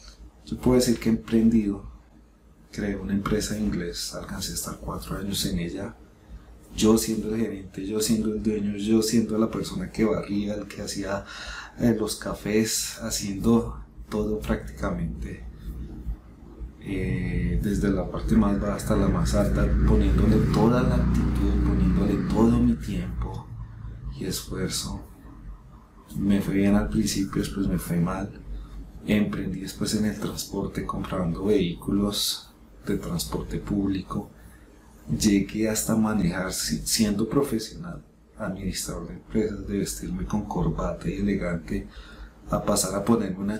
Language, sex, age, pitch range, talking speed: Spanish, male, 30-49, 85-110 Hz, 130 wpm